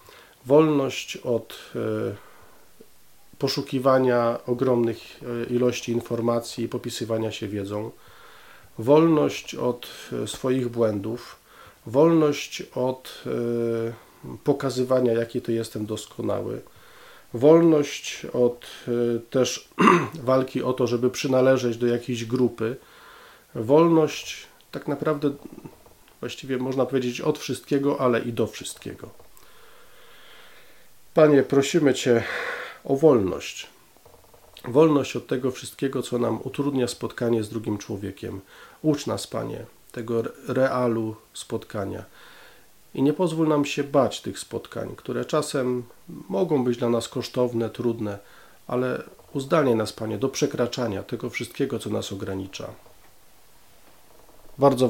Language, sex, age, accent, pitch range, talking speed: Polish, male, 40-59, native, 115-135 Hz, 105 wpm